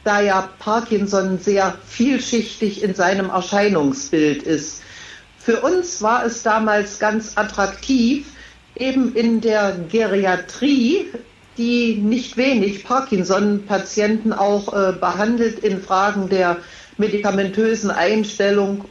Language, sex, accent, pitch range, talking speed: German, female, German, 190-225 Hz, 100 wpm